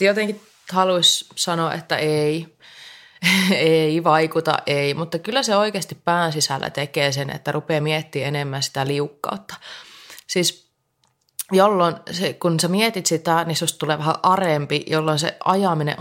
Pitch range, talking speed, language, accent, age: 150-180 Hz, 140 wpm, Finnish, native, 20-39